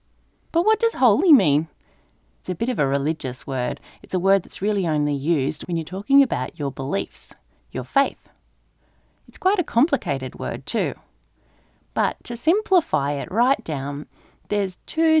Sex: female